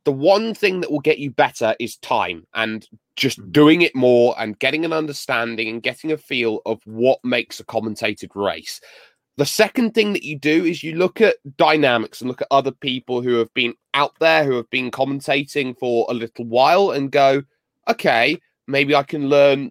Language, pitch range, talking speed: English, 115-150 Hz, 200 wpm